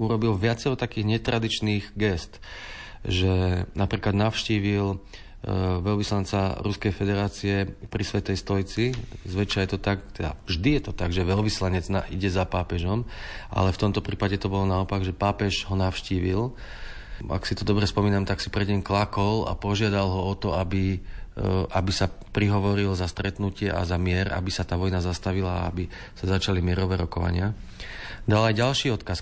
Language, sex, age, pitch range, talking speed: Slovak, male, 30-49, 95-105 Hz, 160 wpm